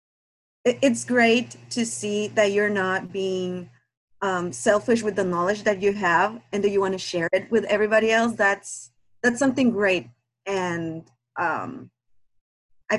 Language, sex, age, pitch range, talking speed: English, female, 30-49, 165-210 Hz, 150 wpm